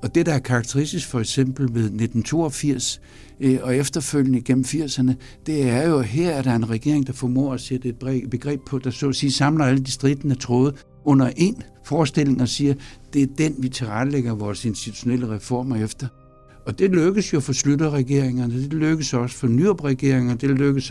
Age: 60-79